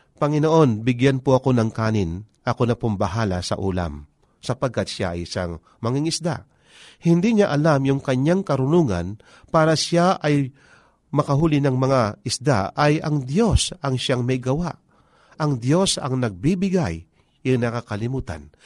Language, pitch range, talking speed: Filipino, 115-160 Hz, 140 wpm